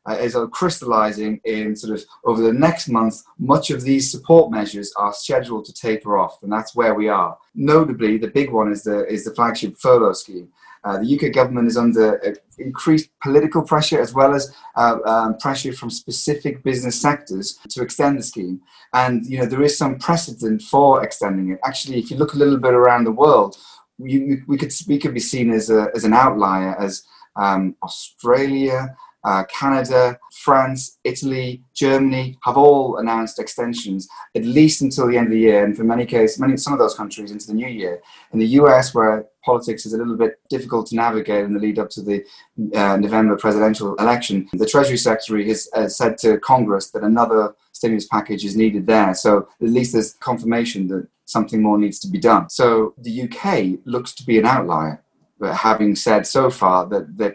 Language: English